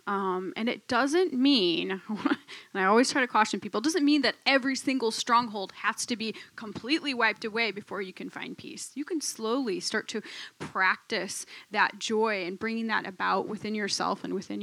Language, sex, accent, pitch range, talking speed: English, female, American, 205-275 Hz, 190 wpm